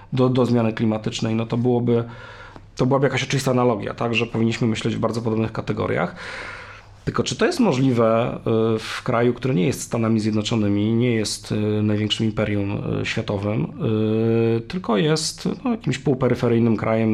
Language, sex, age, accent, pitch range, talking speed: Polish, male, 40-59, native, 110-130 Hz, 150 wpm